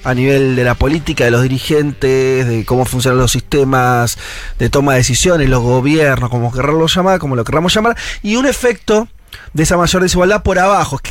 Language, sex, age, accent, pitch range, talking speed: Spanish, male, 30-49, Argentinian, 120-180 Hz, 195 wpm